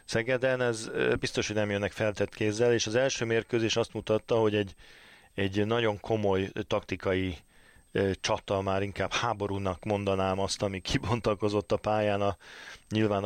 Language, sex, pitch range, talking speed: Hungarian, male, 100-110 Hz, 150 wpm